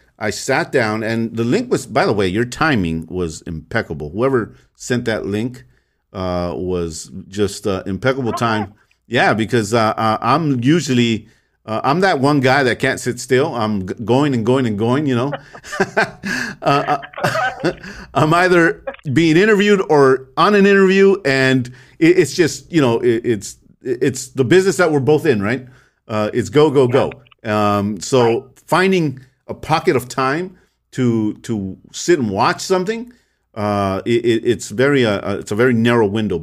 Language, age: English, 50-69